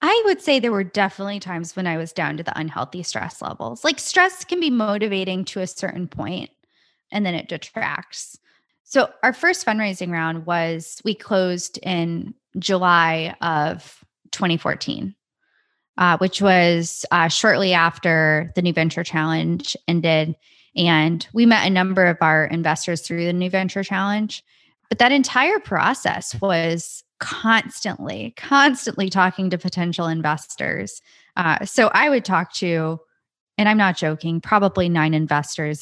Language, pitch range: English, 170-225 Hz